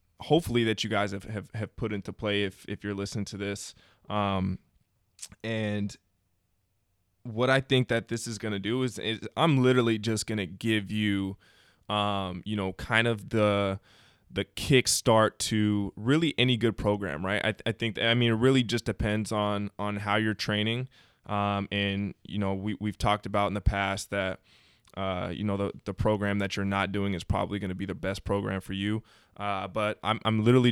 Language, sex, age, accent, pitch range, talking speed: English, male, 20-39, American, 100-110 Hz, 200 wpm